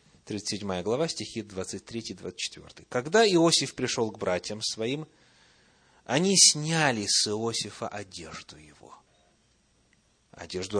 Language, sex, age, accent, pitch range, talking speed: Russian, male, 30-49, native, 100-155 Hz, 95 wpm